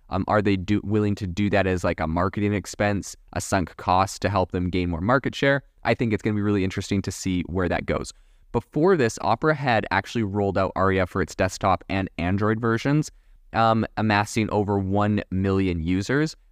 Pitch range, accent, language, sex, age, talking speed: 95-110 Hz, American, English, male, 20-39, 200 wpm